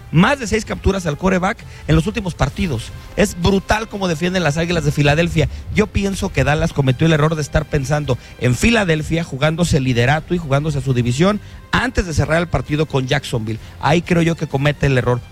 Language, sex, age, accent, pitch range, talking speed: English, male, 40-59, Mexican, 130-165 Hz, 200 wpm